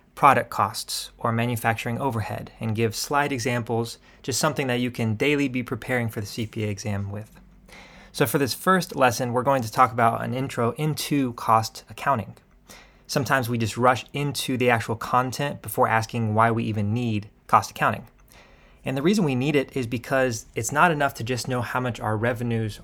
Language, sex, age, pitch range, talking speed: English, male, 20-39, 110-130 Hz, 185 wpm